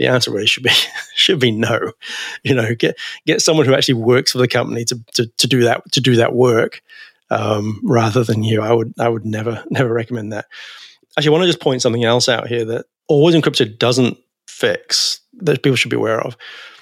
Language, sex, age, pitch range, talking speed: English, male, 30-49, 115-140 Hz, 220 wpm